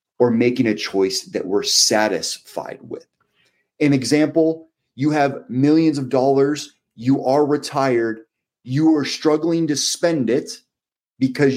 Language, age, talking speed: English, 30-49, 130 wpm